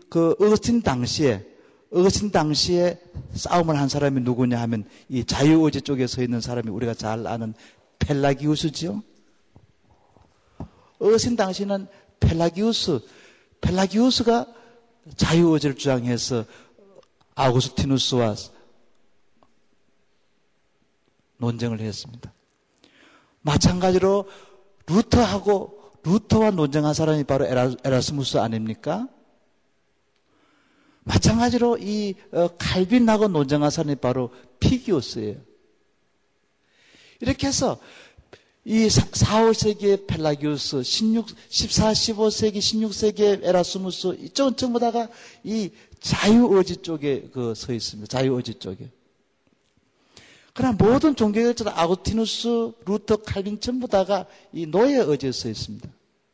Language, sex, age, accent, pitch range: Korean, male, 50-69, native, 130-215 Hz